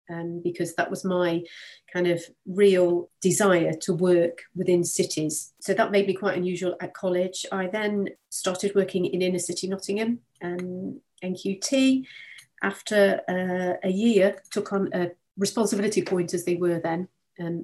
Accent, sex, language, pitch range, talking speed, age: British, female, English, 180-200 Hz, 155 wpm, 40-59